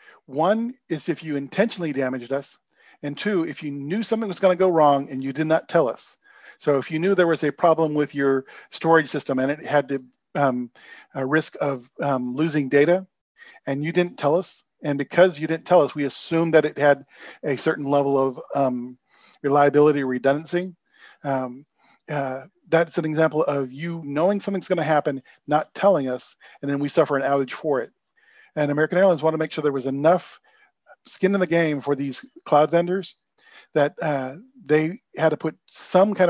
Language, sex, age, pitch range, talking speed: English, male, 40-59, 140-165 Hz, 195 wpm